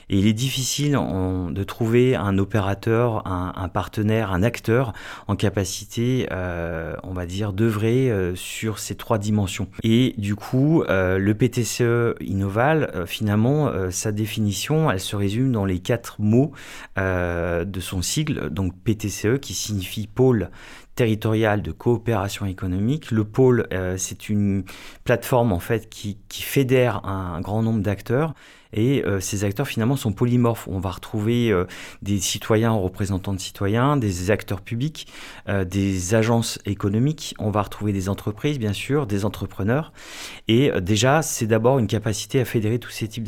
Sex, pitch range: male, 95-120 Hz